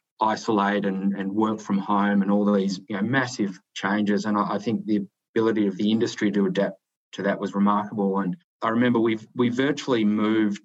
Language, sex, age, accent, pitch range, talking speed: English, male, 20-39, Australian, 100-110 Hz, 195 wpm